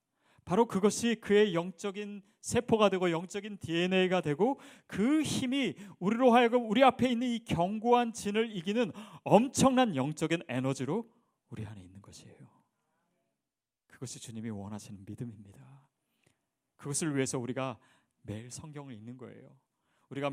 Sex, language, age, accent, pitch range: male, Korean, 40-59, native, 125-195 Hz